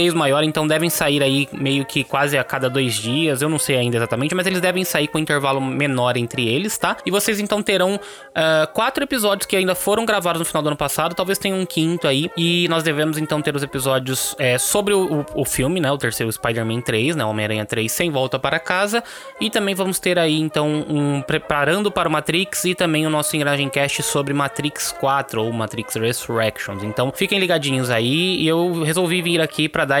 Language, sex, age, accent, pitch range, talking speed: Portuguese, male, 20-39, Brazilian, 130-170 Hz, 210 wpm